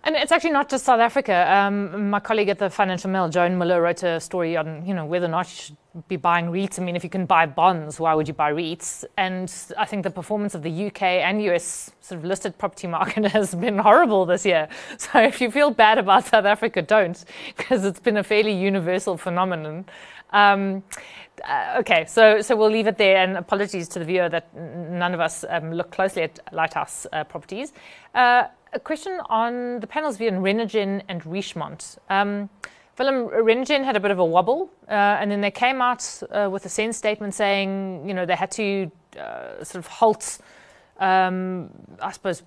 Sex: female